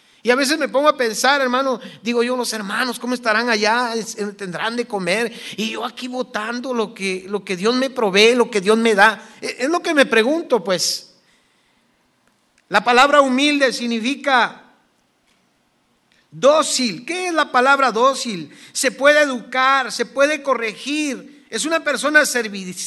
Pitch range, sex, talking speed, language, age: 225-275 Hz, male, 155 wpm, English, 50-69